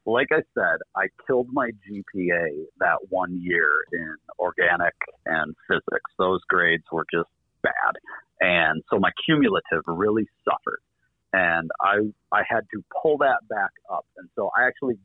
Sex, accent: male, American